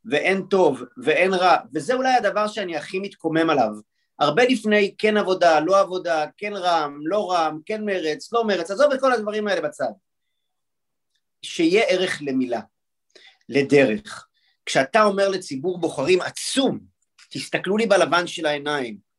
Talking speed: 140 wpm